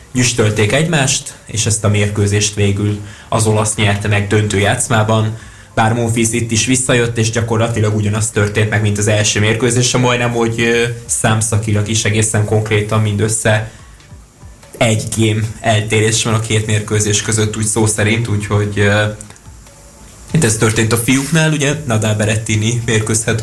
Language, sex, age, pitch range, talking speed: Hungarian, male, 20-39, 105-115 Hz, 135 wpm